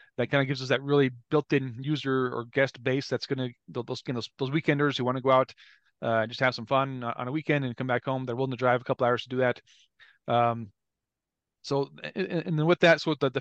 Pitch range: 125-145 Hz